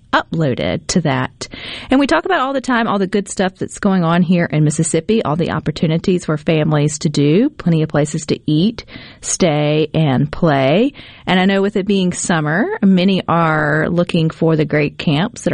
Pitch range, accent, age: 155-220 Hz, American, 40-59